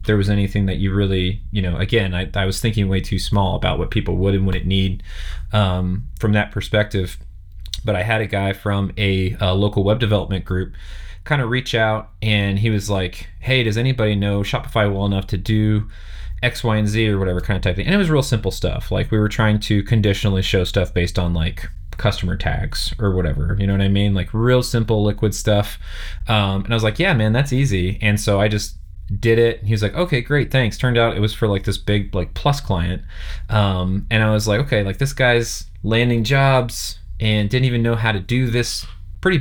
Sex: male